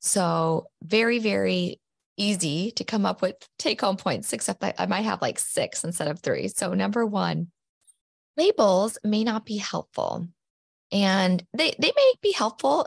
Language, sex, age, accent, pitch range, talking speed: English, female, 20-39, American, 180-245 Hz, 165 wpm